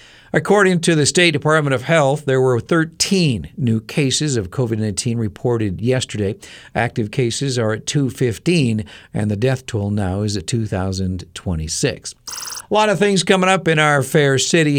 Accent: American